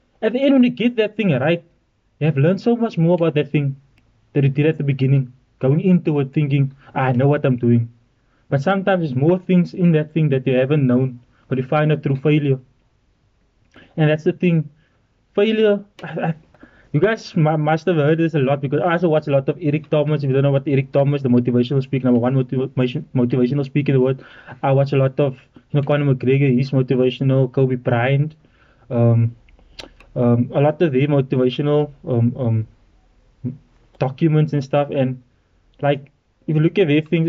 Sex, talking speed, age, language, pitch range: male, 195 wpm, 20-39, English, 130-160 Hz